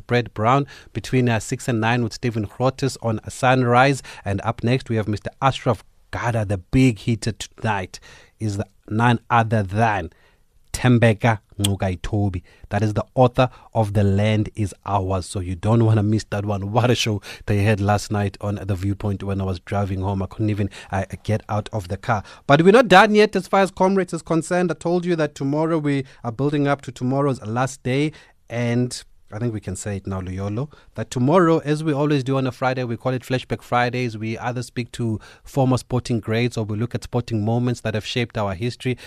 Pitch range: 100-125 Hz